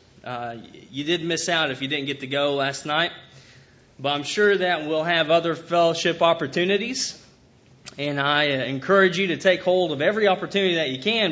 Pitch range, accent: 130-195 Hz, American